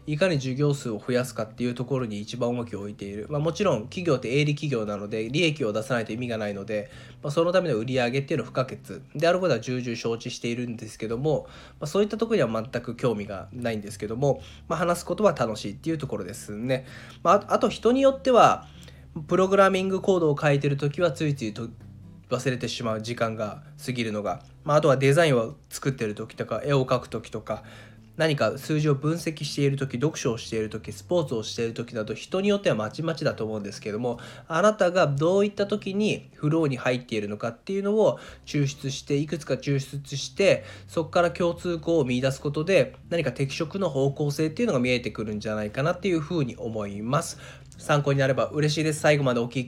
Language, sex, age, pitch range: Japanese, male, 20-39, 115-155 Hz